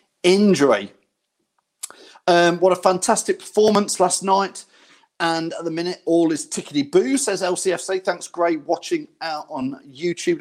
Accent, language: British, English